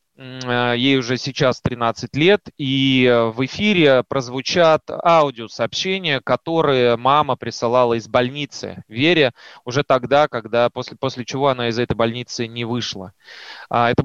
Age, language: 20-39, Russian